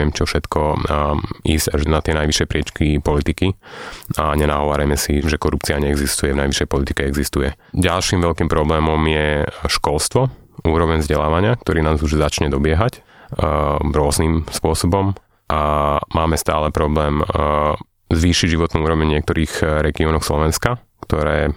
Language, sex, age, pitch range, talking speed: Slovak, male, 30-49, 75-85 Hz, 130 wpm